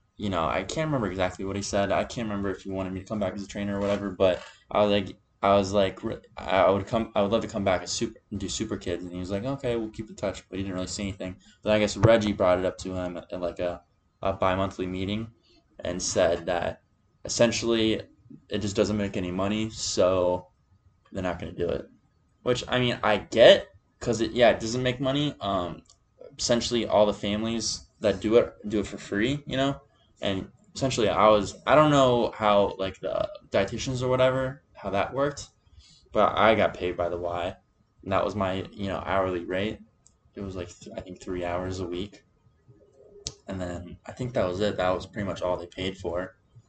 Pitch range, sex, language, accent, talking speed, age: 95-115 Hz, male, English, American, 225 wpm, 10-29